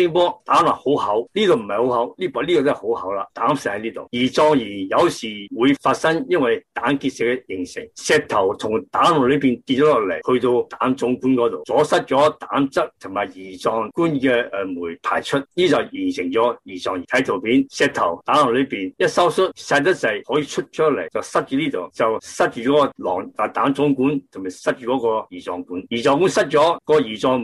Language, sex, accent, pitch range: Chinese, male, native, 115-150 Hz